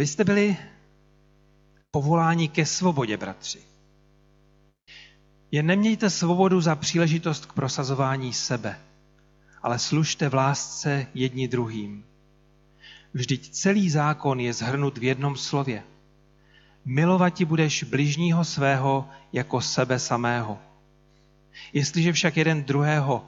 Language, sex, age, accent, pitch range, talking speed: Czech, male, 40-59, native, 130-160 Hz, 105 wpm